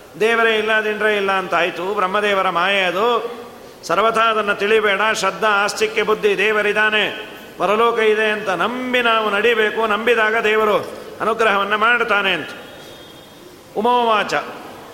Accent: native